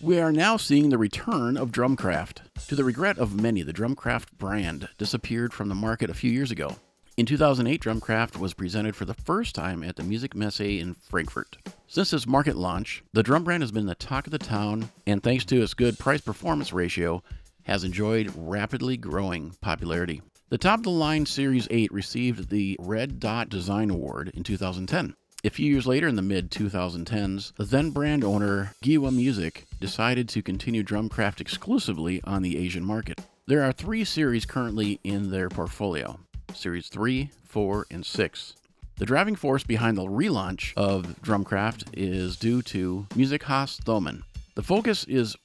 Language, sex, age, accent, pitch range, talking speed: English, male, 50-69, American, 95-130 Hz, 170 wpm